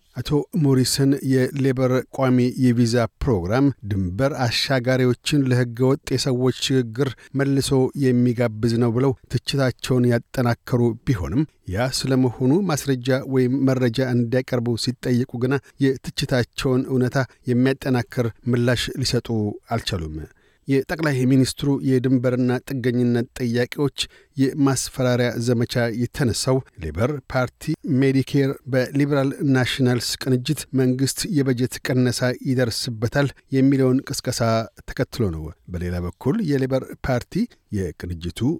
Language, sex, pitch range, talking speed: Amharic, male, 120-135 Hz, 90 wpm